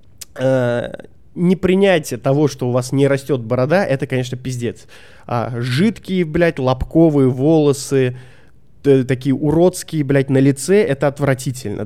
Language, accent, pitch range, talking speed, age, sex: Russian, native, 120-170 Hz, 125 wpm, 20-39, male